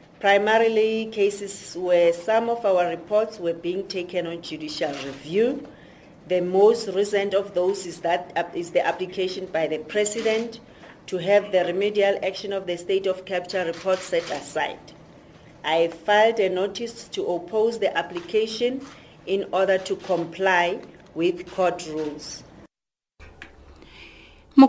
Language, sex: English, female